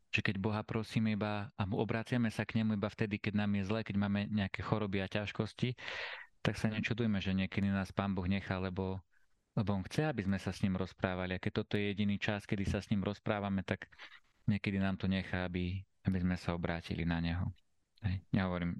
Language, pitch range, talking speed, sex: Slovak, 95-105 Hz, 210 wpm, male